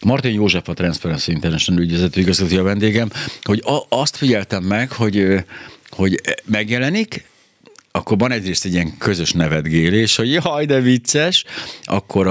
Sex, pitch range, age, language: male, 80-105 Hz, 60-79, Hungarian